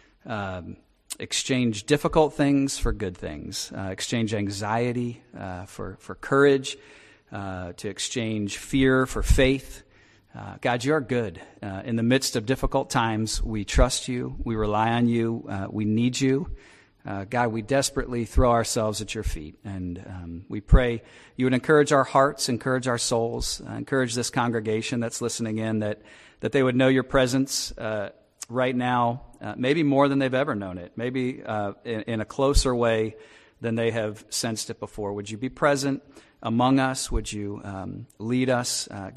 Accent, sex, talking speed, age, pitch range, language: American, male, 175 wpm, 40-59, 105-130 Hz, English